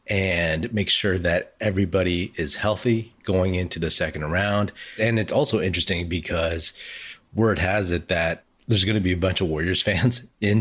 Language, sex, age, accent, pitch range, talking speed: English, male, 30-49, American, 80-95 Hz, 175 wpm